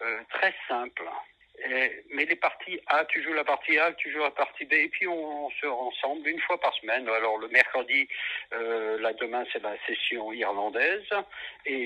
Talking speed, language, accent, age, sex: 200 wpm, French, French, 60-79, male